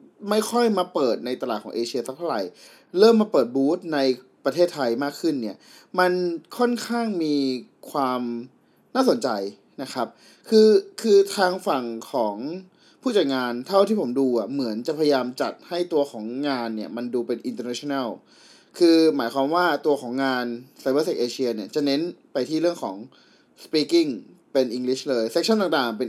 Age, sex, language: 20-39, male, Thai